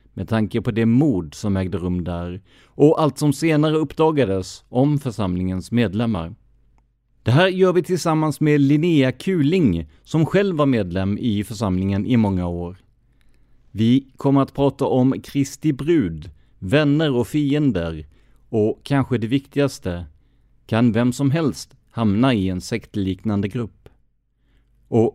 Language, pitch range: English, 105-140 Hz